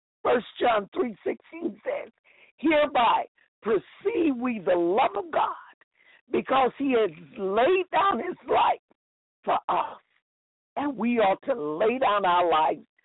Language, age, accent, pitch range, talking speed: English, 50-69, American, 220-320 Hz, 135 wpm